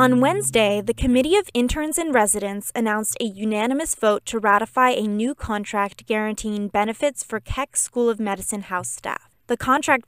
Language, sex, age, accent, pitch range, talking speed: English, female, 10-29, American, 205-245 Hz, 165 wpm